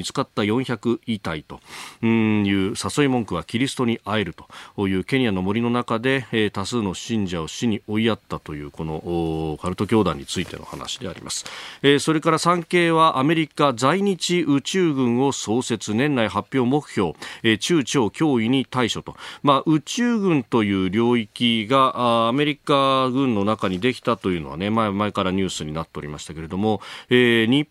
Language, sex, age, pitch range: Japanese, male, 40-59, 95-145 Hz